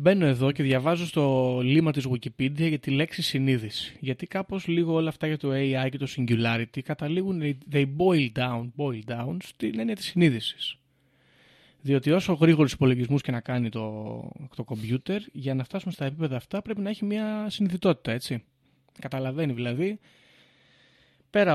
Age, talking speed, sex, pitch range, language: 20-39, 160 wpm, male, 125-160 Hz, Greek